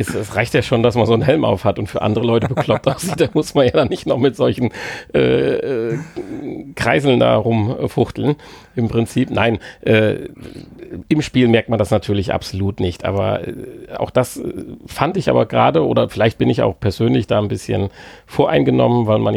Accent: German